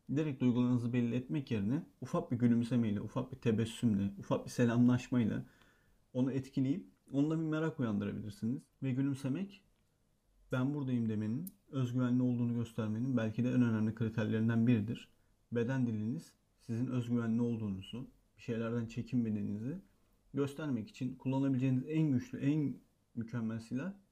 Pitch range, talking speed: 110-130 Hz, 125 wpm